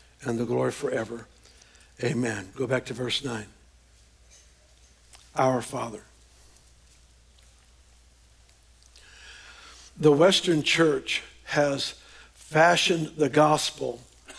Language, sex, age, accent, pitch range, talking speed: English, male, 60-79, American, 110-155 Hz, 80 wpm